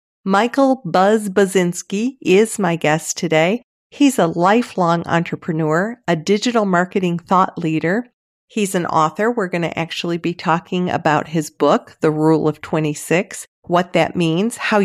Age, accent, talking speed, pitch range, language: 50-69, American, 140 wpm, 170-215 Hz, English